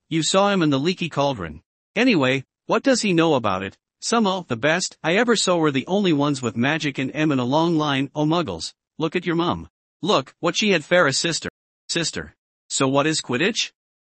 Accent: American